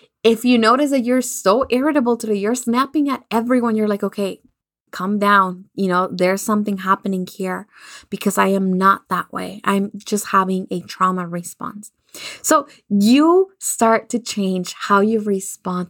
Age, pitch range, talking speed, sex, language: 20-39, 185-230 Hz, 160 wpm, female, English